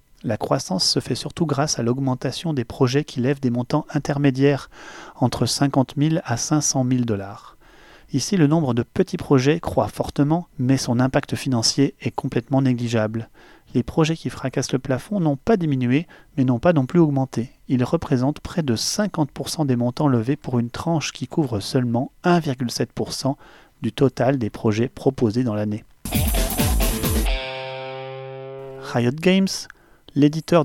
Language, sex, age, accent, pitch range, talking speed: French, male, 30-49, French, 125-155 Hz, 150 wpm